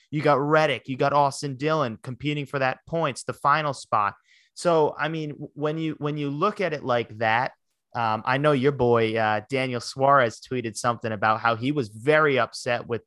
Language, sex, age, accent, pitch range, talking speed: English, male, 30-49, American, 115-145 Hz, 195 wpm